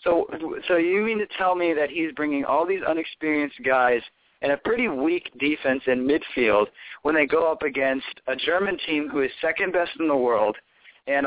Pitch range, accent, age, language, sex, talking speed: 135-180 Hz, American, 40-59, English, male, 195 wpm